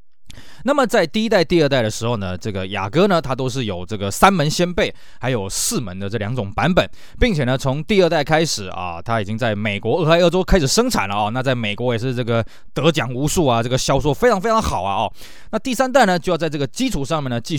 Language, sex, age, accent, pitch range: Chinese, male, 20-39, native, 115-185 Hz